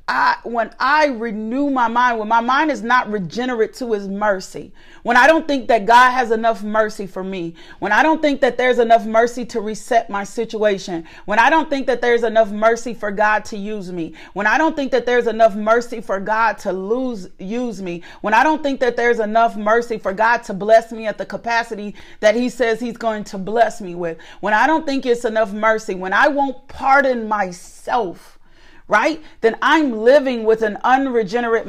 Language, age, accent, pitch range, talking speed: English, 40-59, American, 215-255 Hz, 205 wpm